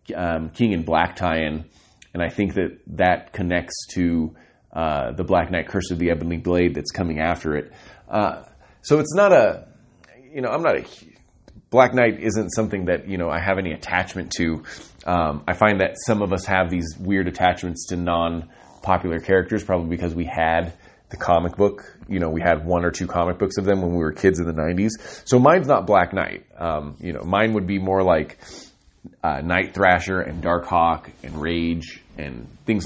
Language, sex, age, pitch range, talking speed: English, male, 30-49, 85-100 Hz, 200 wpm